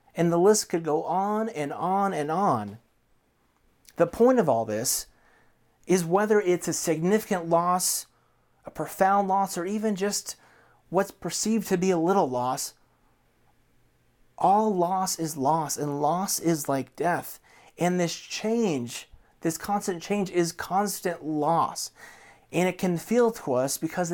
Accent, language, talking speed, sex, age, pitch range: American, English, 145 wpm, male, 30-49, 165-200 Hz